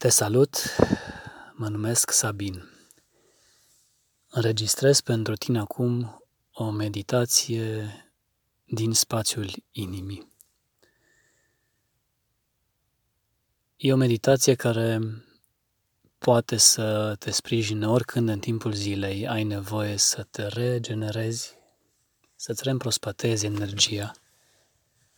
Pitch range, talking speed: 105-120 Hz, 80 wpm